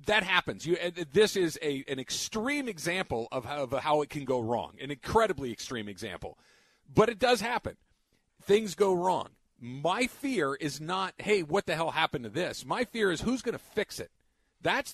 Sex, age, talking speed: male, 40-59, 195 wpm